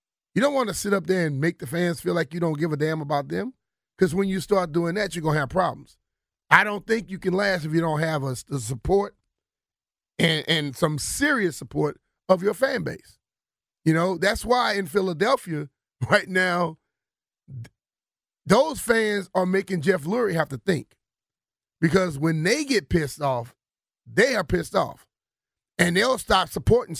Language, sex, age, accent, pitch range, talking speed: English, male, 40-59, American, 150-185 Hz, 185 wpm